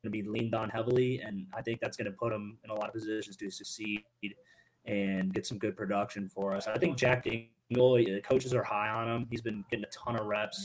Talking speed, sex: 250 wpm, male